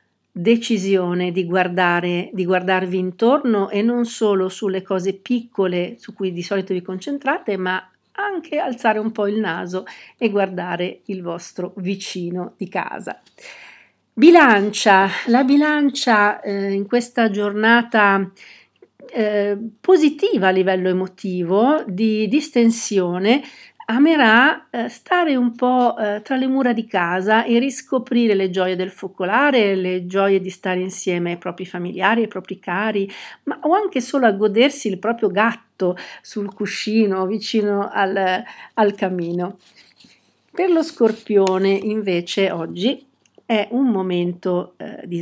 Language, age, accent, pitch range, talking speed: Italian, 50-69, native, 185-235 Hz, 125 wpm